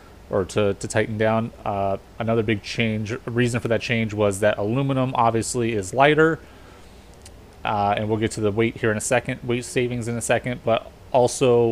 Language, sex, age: English, male, 30-49